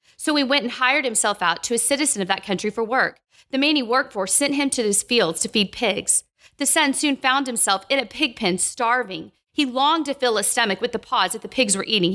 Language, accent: English, American